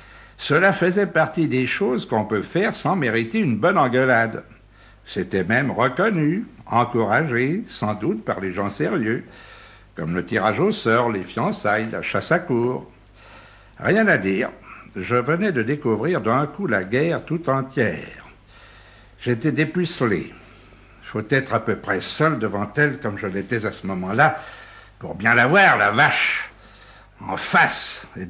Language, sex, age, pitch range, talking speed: French, male, 60-79, 105-150 Hz, 155 wpm